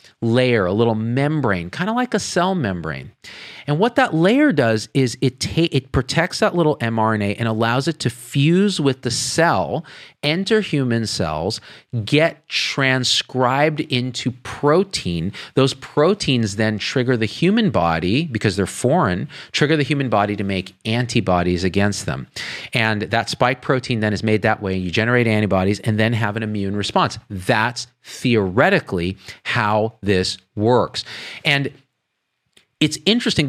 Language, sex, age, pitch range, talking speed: English, male, 40-59, 105-145 Hz, 150 wpm